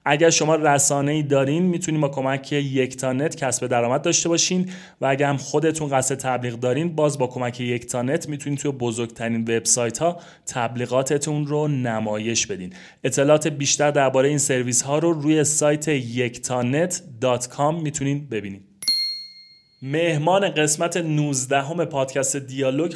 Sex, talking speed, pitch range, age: male, 135 wpm, 125-150 Hz, 30-49